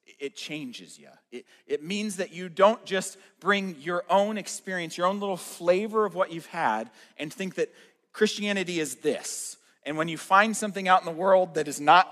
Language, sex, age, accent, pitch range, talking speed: English, male, 40-59, American, 160-210 Hz, 200 wpm